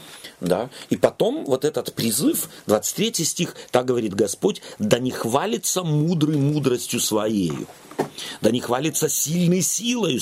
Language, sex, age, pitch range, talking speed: Russian, male, 40-59, 125-185 Hz, 130 wpm